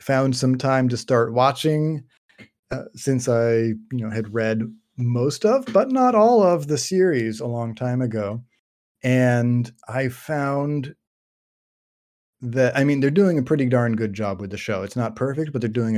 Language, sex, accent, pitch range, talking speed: English, male, American, 110-125 Hz, 175 wpm